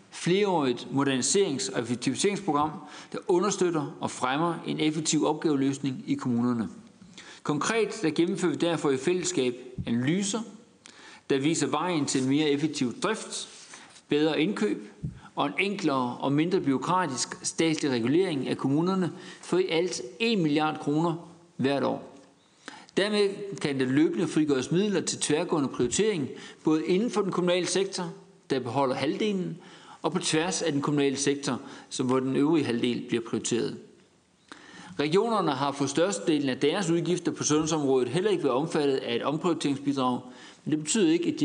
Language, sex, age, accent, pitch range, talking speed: Danish, male, 60-79, native, 140-190 Hz, 150 wpm